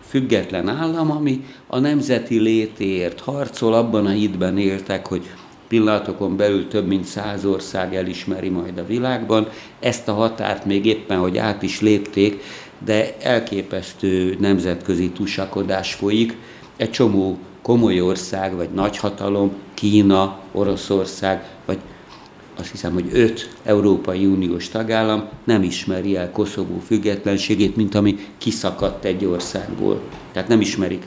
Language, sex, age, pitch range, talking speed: Hungarian, male, 60-79, 95-105 Hz, 125 wpm